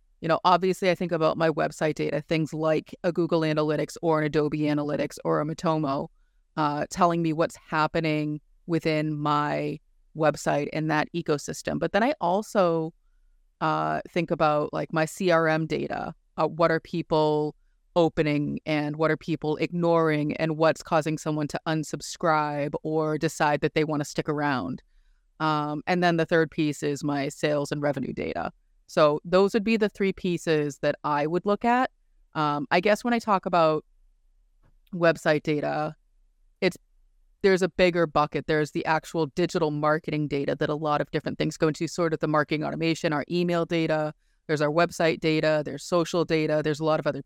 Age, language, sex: 30-49, English, female